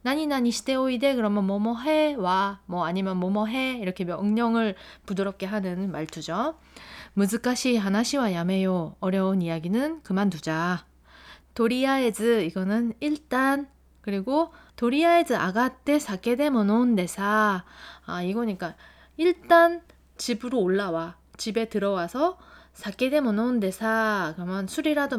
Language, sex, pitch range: Korean, female, 185-255 Hz